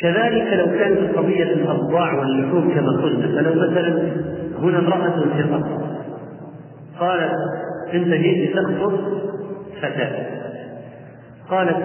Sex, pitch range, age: male, 140-185 Hz, 40-59